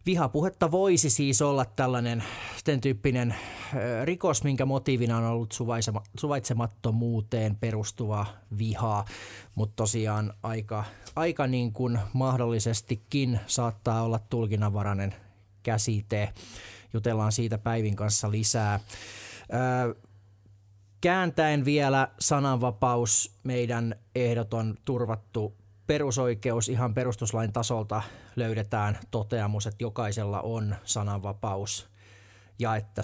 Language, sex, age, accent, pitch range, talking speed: Finnish, male, 30-49, native, 105-125 Hz, 85 wpm